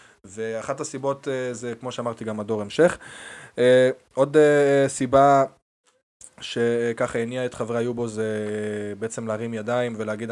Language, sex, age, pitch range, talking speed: Hebrew, male, 20-39, 110-125 Hz, 110 wpm